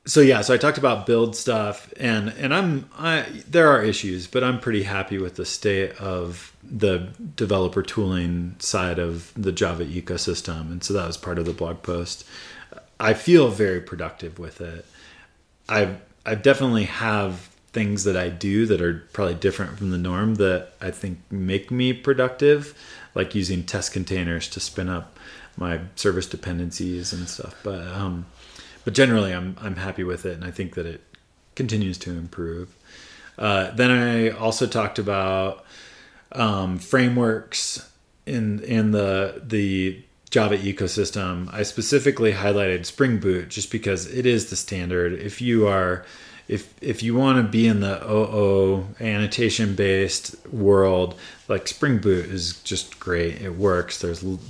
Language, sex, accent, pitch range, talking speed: English, male, American, 90-110 Hz, 160 wpm